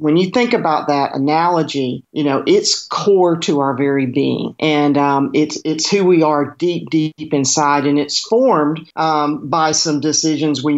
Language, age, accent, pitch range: English, 50-69, American, 145-165 Hz